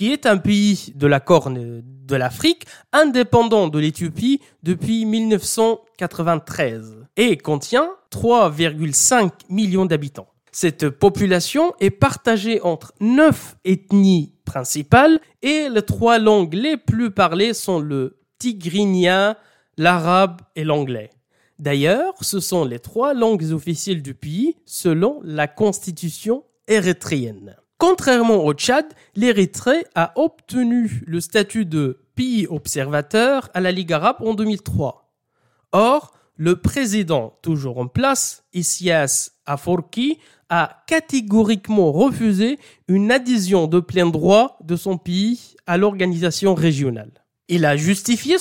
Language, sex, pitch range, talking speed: French, male, 155-230 Hz, 120 wpm